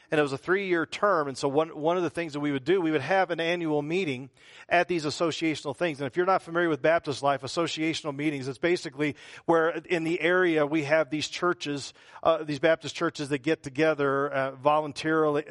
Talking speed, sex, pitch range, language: 215 wpm, male, 140-180 Hz, English